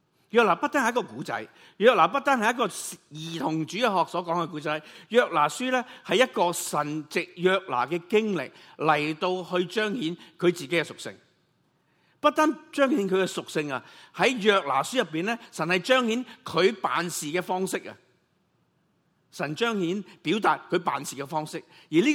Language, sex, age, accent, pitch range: Chinese, male, 50-69, native, 145-205 Hz